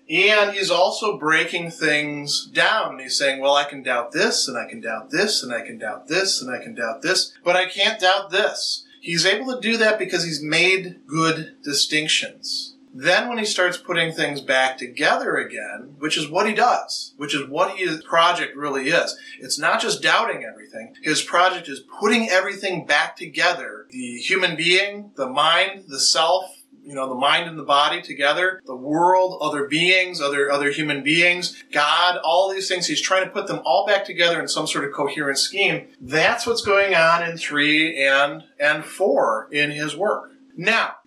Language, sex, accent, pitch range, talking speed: English, male, American, 145-190 Hz, 190 wpm